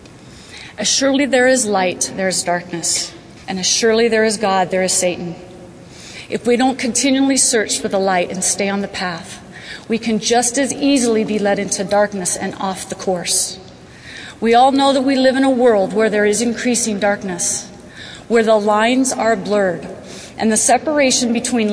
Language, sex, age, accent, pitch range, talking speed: English, female, 30-49, American, 195-255 Hz, 180 wpm